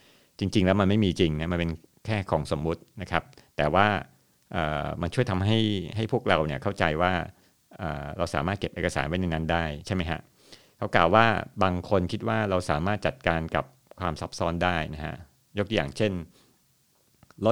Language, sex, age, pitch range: Thai, male, 60-79, 85-105 Hz